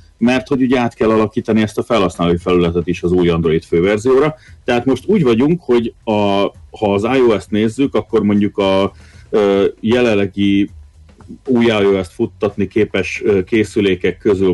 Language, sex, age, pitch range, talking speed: Hungarian, male, 40-59, 95-120 Hz, 155 wpm